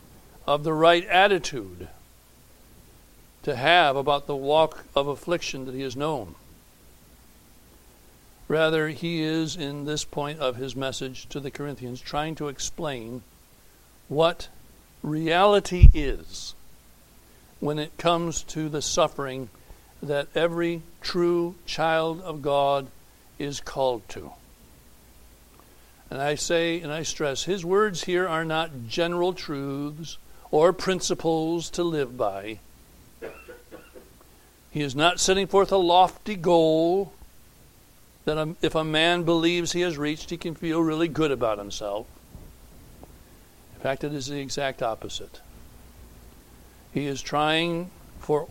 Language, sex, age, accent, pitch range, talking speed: English, male, 60-79, American, 125-165 Hz, 125 wpm